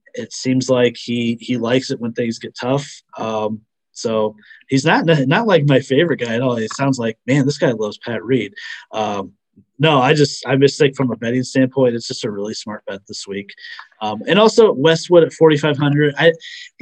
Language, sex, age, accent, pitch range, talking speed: English, male, 30-49, American, 110-145 Hz, 195 wpm